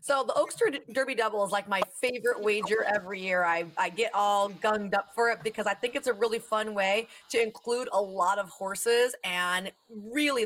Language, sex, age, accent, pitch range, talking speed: English, female, 30-49, American, 190-230 Hz, 205 wpm